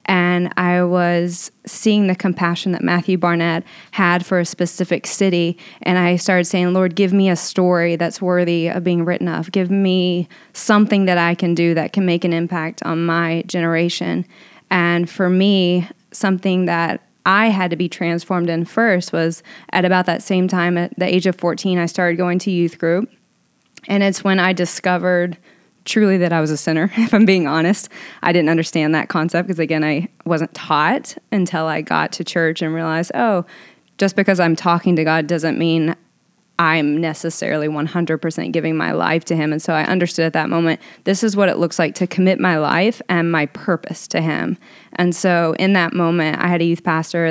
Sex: female